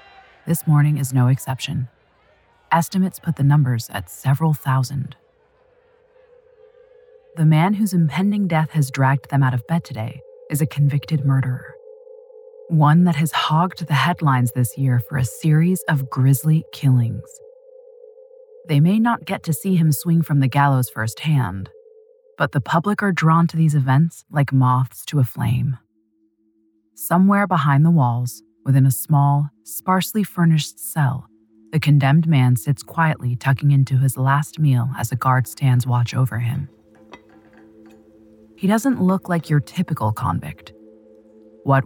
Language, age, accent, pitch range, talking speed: English, 30-49, American, 125-165 Hz, 145 wpm